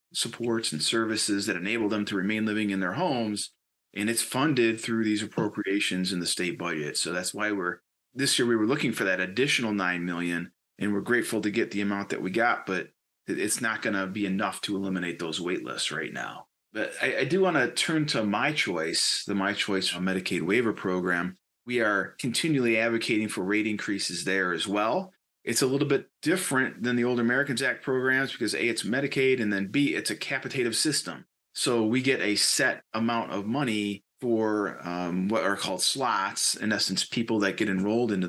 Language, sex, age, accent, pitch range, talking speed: English, male, 30-49, American, 95-120 Hz, 205 wpm